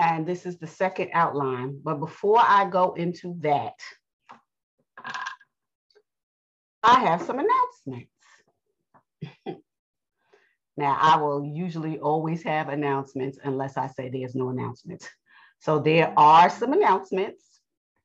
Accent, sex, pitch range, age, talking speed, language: American, female, 135-185 Hz, 40-59, 115 wpm, English